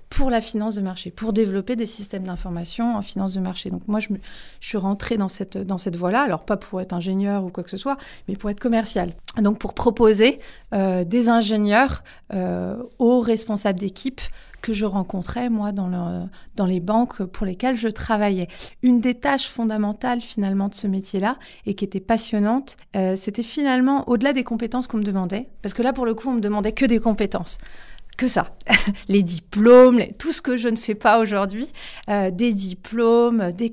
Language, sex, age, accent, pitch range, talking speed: French, female, 30-49, French, 195-235 Hz, 200 wpm